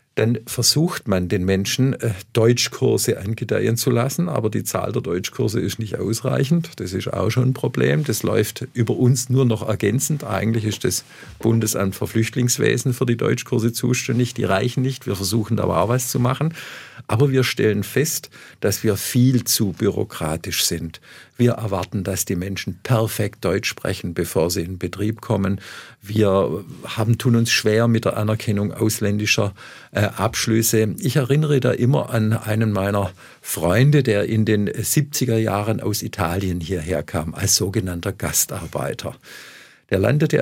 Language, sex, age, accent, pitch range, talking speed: German, male, 50-69, German, 100-125 Hz, 155 wpm